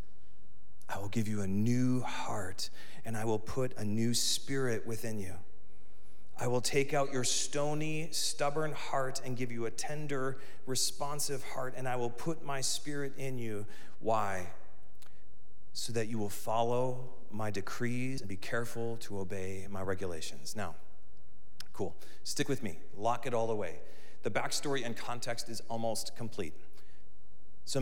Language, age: English, 40-59